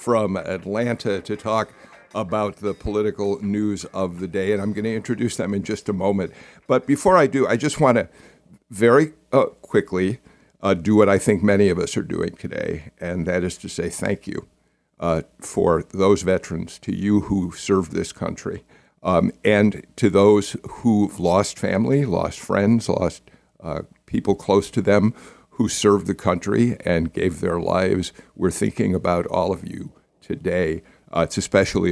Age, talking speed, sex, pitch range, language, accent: 60-79, 175 wpm, male, 95-120 Hz, English, American